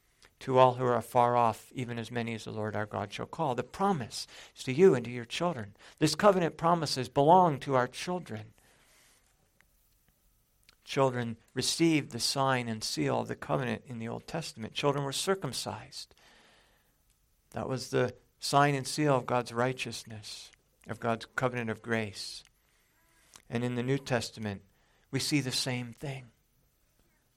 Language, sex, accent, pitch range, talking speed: English, male, American, 120-145 Hz, 160 wpm